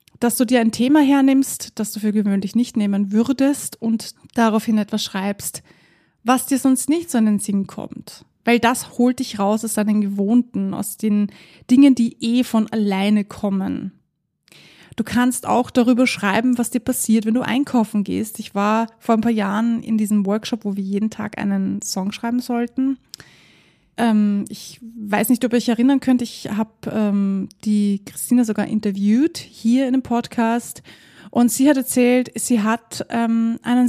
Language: German